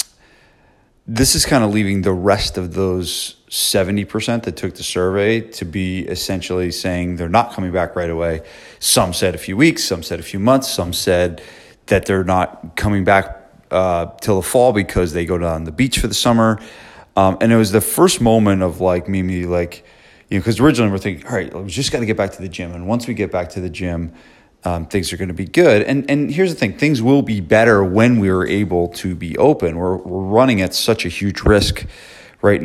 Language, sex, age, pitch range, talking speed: English, male, 30-49, 90-110 Hz, 230 wpm